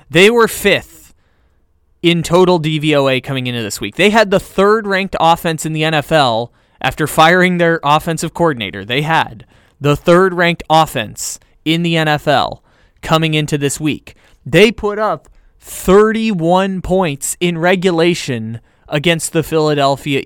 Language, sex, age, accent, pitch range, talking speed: English, male, 20-39, American, 145-195 Hz, 135 wpm